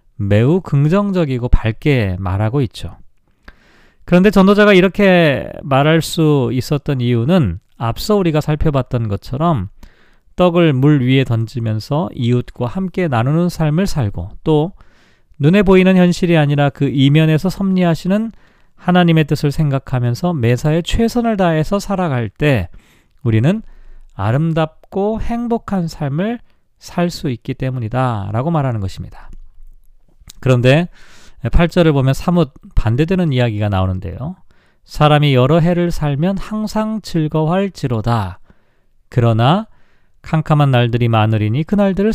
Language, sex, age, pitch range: Korean, male, 40-59, 120-175 Hz